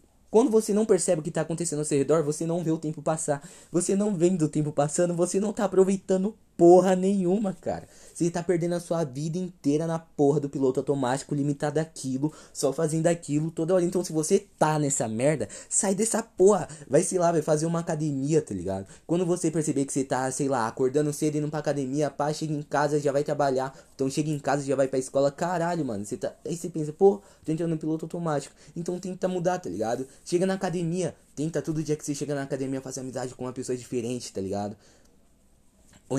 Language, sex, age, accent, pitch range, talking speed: Portuguese, male, 20-39, Brazilian, 135-170 Hz, 220 wpm